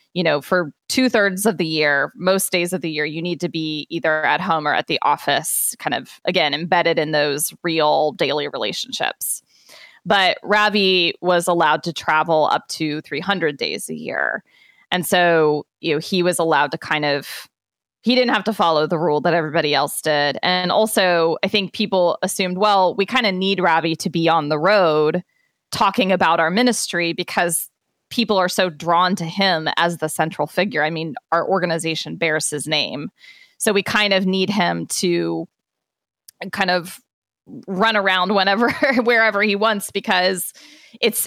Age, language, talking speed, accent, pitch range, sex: 20-39, English, 175 wpm, American, 160-195 Hz, female